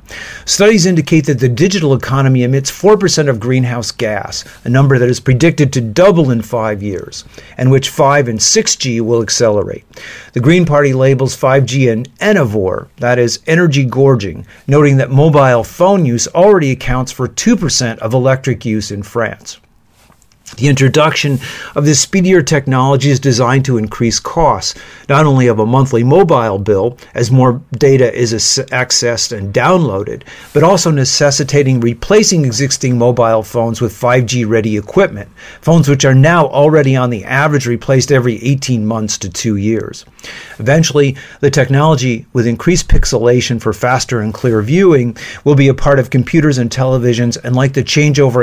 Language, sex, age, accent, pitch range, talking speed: French, male, 50-69, American, 120-145 Hz, 155 wpm